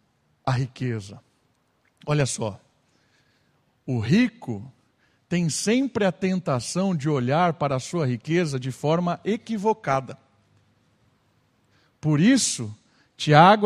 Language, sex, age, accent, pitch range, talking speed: Portuguese, male, 50-69, Brazilian, 130-185 Hz, 95 wpm